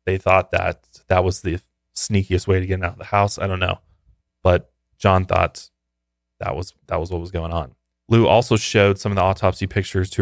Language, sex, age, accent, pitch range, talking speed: English, male, 20-39, American, 85-100 Hz, 215 wpm